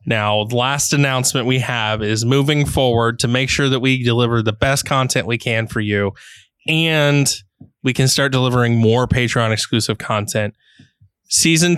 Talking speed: 160 wpm